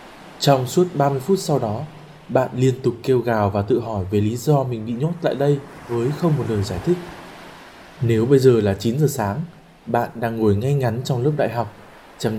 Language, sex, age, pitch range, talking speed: Vietnamese, male, 20-39, 105-145 Hz, 220 wpm